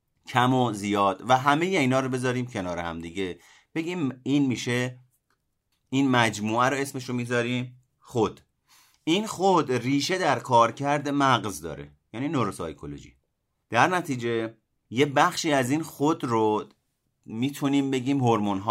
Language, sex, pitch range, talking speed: Persian, male, 100-135 Hz, 140 wpm